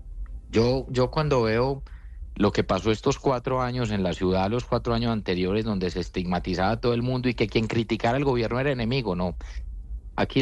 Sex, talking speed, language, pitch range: male, 195 wpm, Spanish, 95-130 Hz